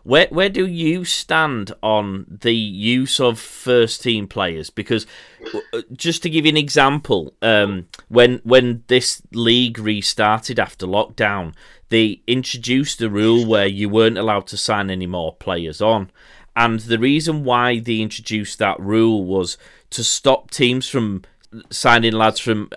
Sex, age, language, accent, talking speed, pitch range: male, 30-49, English, British, 150 wpm, 100-120 Hz